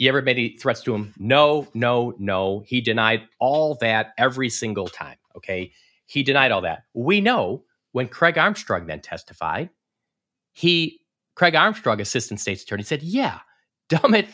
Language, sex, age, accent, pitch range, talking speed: English, male, 40-59, American, 120-190 Hz, 160 wpm